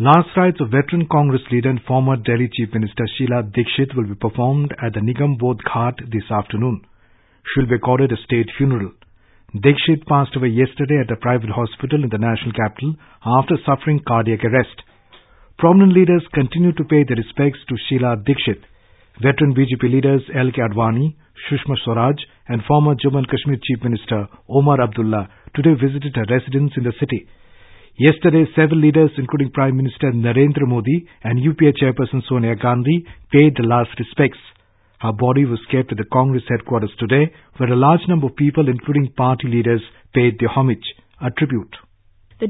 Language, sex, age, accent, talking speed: English, male, 50-69, Indian, 170 wpm